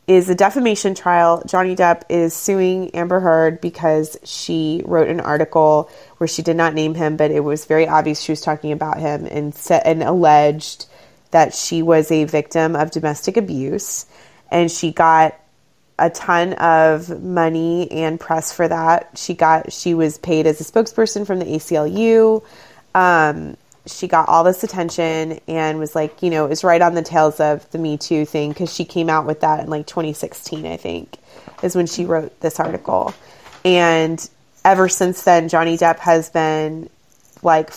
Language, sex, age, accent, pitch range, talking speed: English, female, 20-39, American, 155-175 Hz, 180 wpm